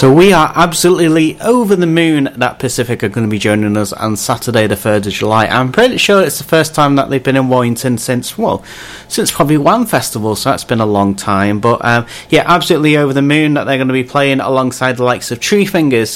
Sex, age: male, 30-49